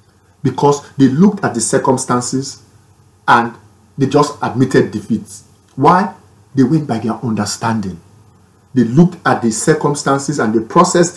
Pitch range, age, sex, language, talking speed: 105-165 Hz, 50-69, male, English, 135 wpm